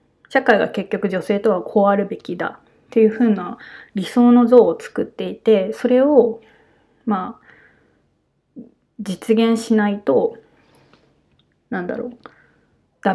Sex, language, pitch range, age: female, Japanese, 205-240 Hz, 20-39